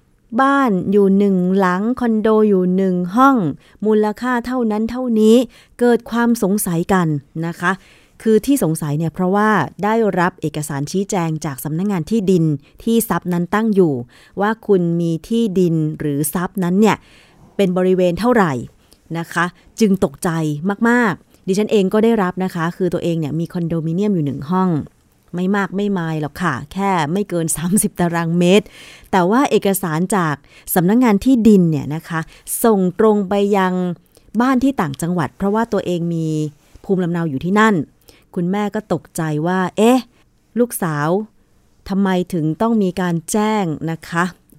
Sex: female